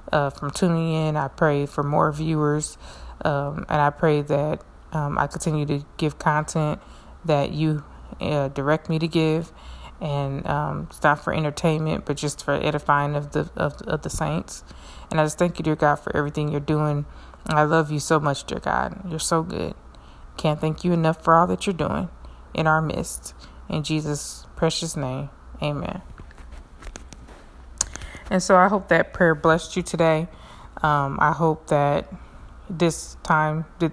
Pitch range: 145-160 Hz